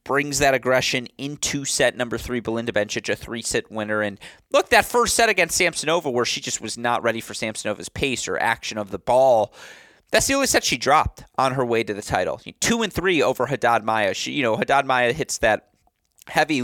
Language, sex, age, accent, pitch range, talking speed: English, male, 30-49, American, 115-140 Hz, 215 wpm